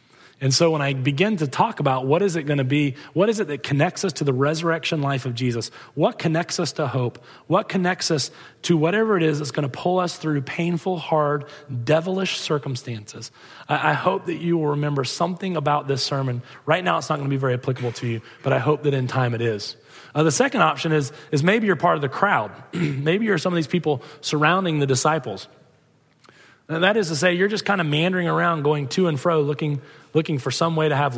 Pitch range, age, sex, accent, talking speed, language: 140-175 Hz, 30-49, male, American, 225 wpm, English